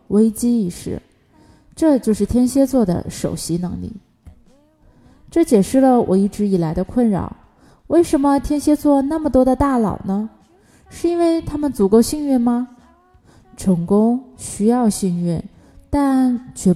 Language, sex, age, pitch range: Chinese, female, 20-39, 185-255 Hz